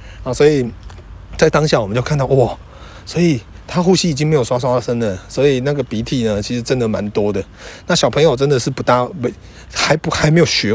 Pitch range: 100-140 Hz